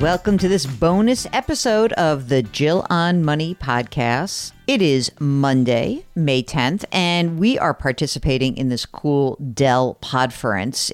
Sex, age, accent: female, 50-69, American